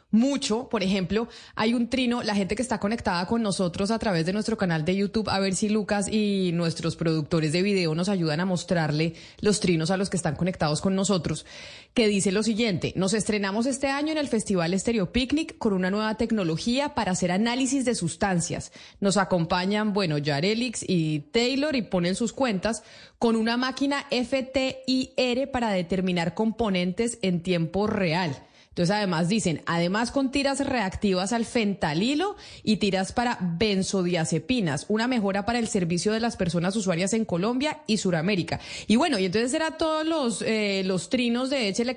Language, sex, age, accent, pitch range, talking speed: Spanish, female, 20-39, Colombian, 185-240 Hz, 175 wpm